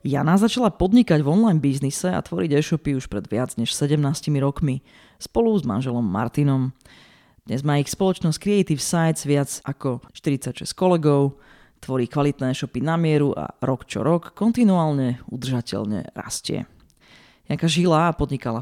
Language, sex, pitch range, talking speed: Slovak, female, 130-165 Hz, 140 wpm